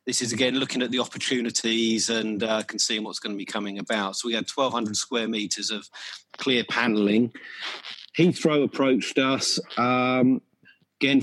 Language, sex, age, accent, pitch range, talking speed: English, male, 40-59, British, 105-125 Hz, 165 wpm